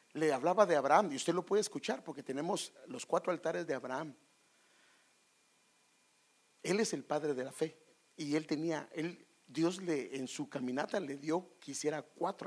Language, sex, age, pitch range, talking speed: English, male, 50-69, 145-205 Hz, 170 wpm